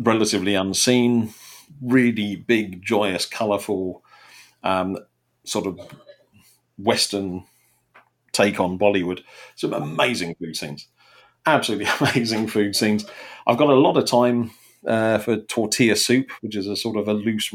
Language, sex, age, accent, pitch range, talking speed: English, male, 40-59, British, 95-110 Hz, 130 wpm